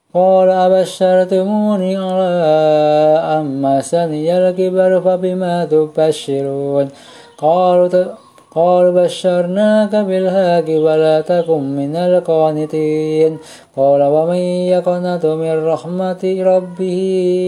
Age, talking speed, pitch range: 20-39, 75 wpm, 155-185 Hz